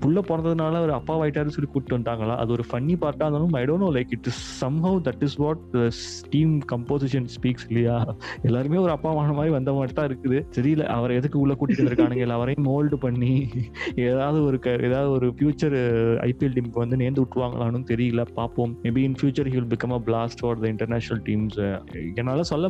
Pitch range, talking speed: 115-145 Hz, 45 wpm